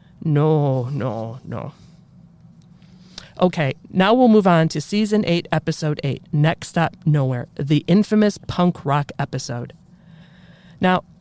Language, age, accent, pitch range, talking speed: English, 40-59, American, 145-180 Hz, 120 wpm